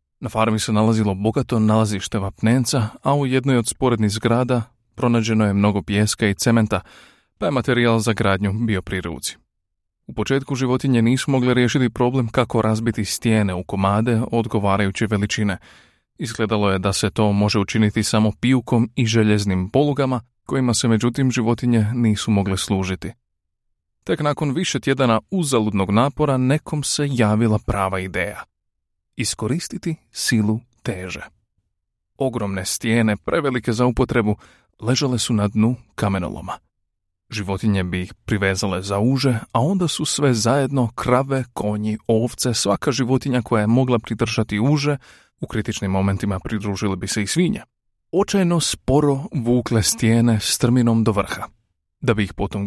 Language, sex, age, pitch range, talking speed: Croatian, male, 30-49, 100-125 Hz, 140 wpm